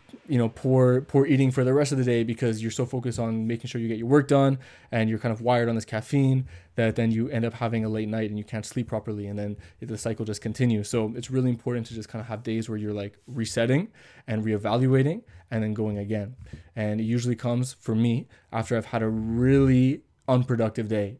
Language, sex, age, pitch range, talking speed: English, male, 20-39, 110-125 Hz, 240 wpm